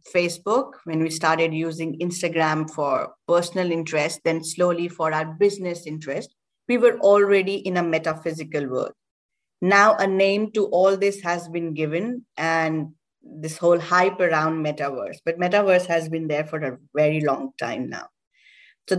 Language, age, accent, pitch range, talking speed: English, 20-39, Indian, 165-220 Hz, 155 wpm